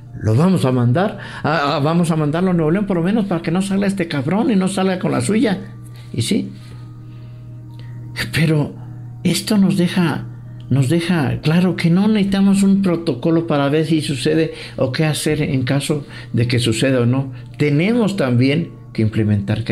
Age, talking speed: 60-79, 175 wpm